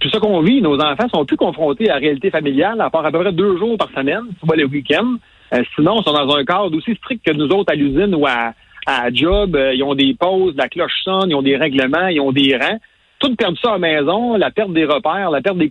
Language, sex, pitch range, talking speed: French, male, 145-210 Hz, 275 wpm